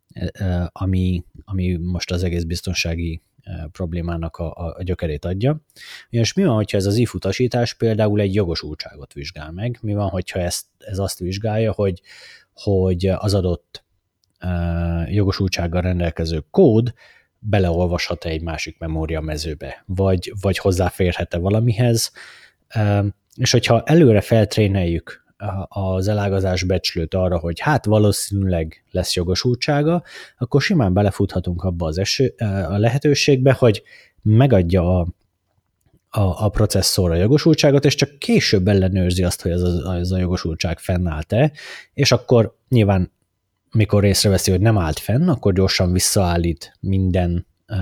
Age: 30-49